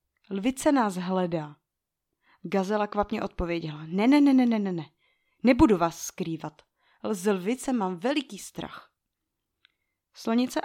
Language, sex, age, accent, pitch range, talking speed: Czech, female, 30-49, native, 170-250 Hz, 120 wpm